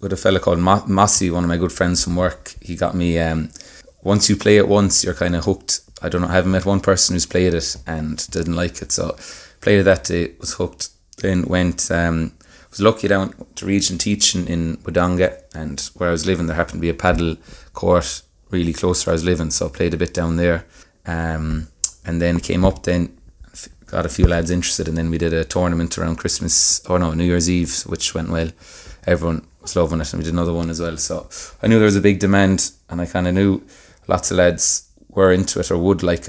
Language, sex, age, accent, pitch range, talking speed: English, male, 20-39, Irish, 85-95 Hz, 240 wpm